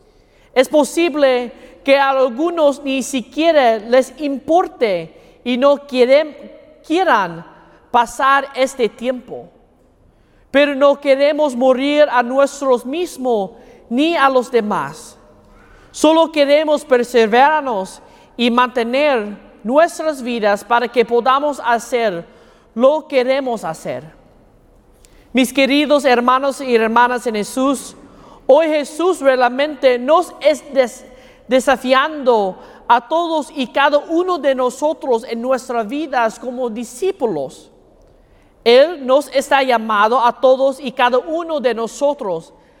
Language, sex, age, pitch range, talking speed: English, male, 40-59, 245-295 Hz, 110 wpm